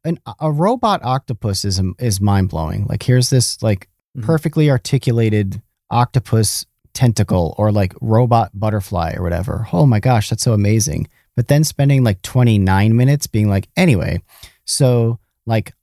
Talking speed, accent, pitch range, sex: 145 wpm, American, 100-140 Hz, male